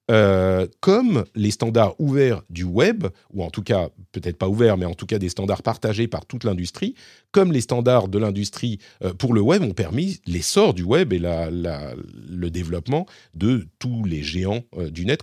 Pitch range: 95-130 Hz